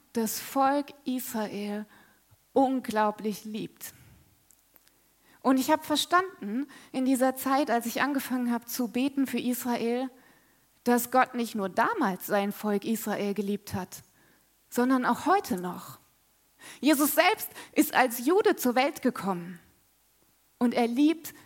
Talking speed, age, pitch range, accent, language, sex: 125 wpm, 20-39, 225-280 Hz, German, German, female